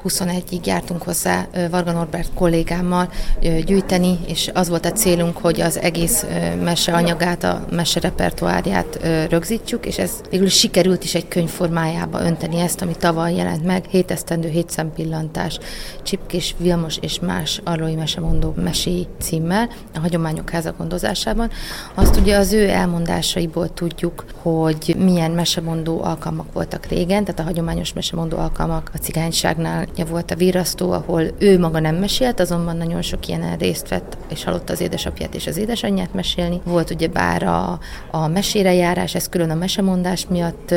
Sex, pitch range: female, 165-185 Hz